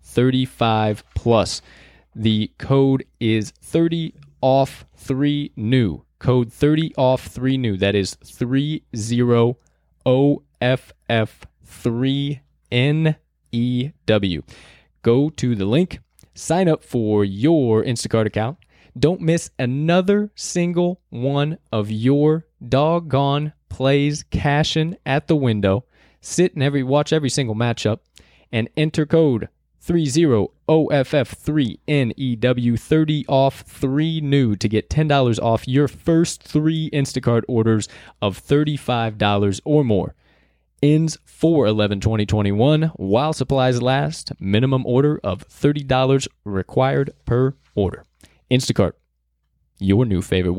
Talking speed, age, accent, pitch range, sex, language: 120 wpm, 20-39, American, 105-145 Hz, male, English